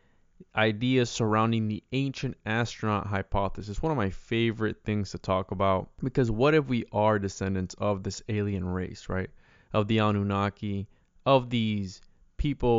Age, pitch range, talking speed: 20-39, 100-120 Hz, 145 wpm